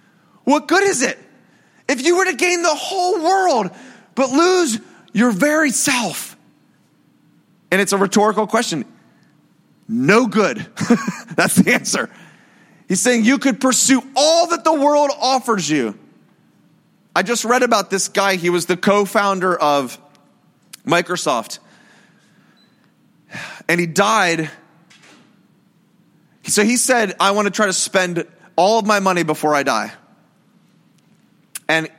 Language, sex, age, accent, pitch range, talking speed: English, male, 30-49, American, 170-225 Hz, 130 wpm